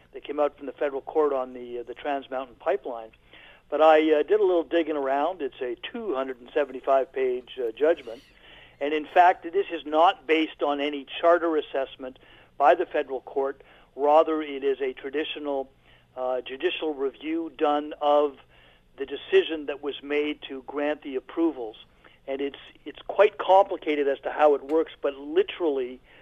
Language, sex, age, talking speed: English, male, 50-69, 165 wpm